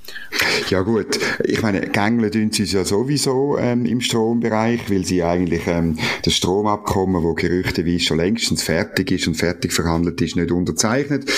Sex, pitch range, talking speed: male, 95-130 Hz, 165 wpm